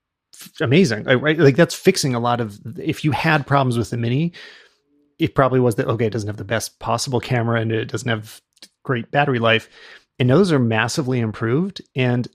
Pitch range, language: 115-140 Hz, English